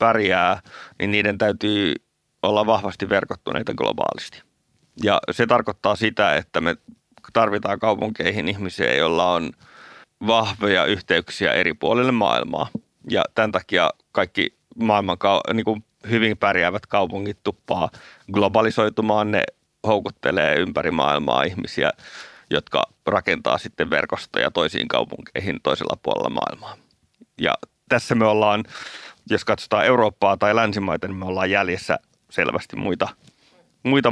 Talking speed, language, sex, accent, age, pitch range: 115 wpm, Finnish, male, native, 30-49, 100-110 Hz